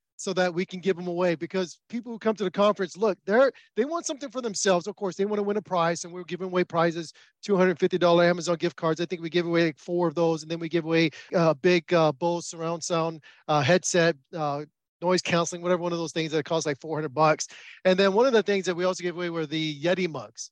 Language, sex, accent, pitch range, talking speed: English, male, American, 175-225 Hz, 260 wpm